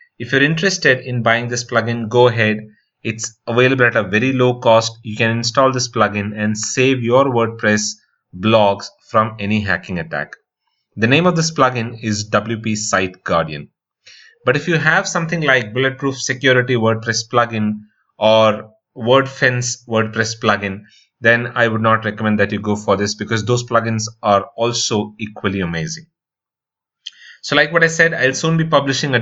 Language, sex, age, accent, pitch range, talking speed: English, male, 30-49, Indian, 110-135 Hz, 165 wpm